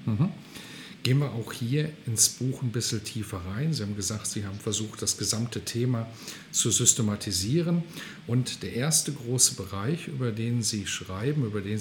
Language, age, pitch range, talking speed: German, 50-69, 110-145 Hz, 165 wpm